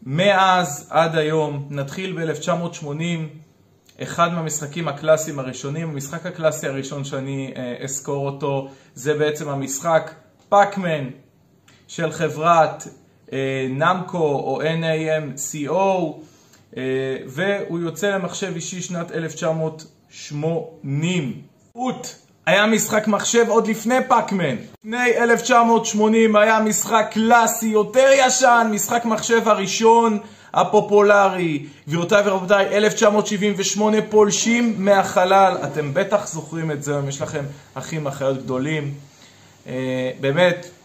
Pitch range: 140-200 Hz